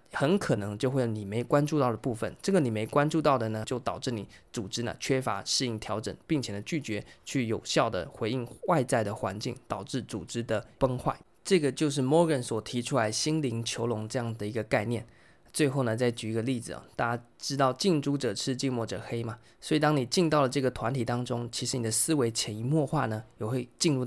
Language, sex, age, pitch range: Chinese, male, 20-39, 110-135 Hz